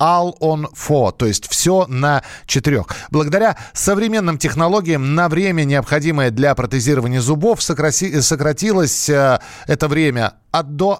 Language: Russian